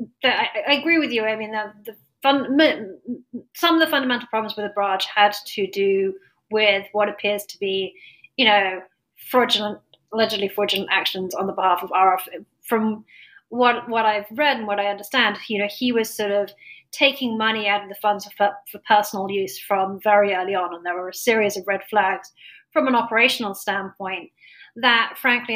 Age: 30-49